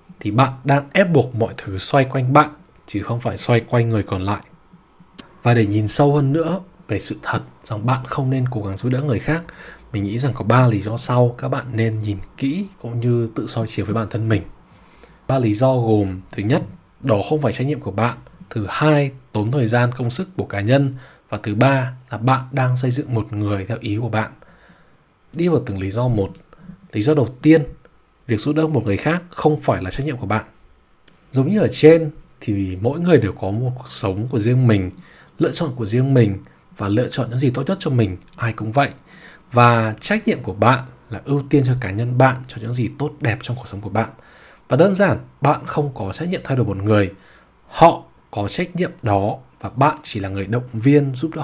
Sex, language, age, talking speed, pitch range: male, Vietnamese, 20-39, 230 wpm, 110-145 Hz